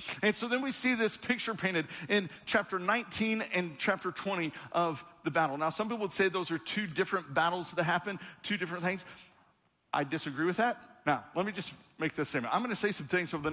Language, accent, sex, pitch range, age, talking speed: English, American, male, 155-205 Hz, 50-69, 225 wpm